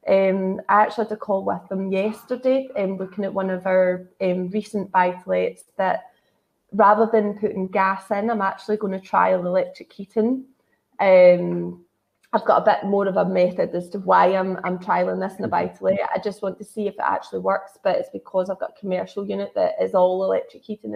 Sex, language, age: female, English, 20-39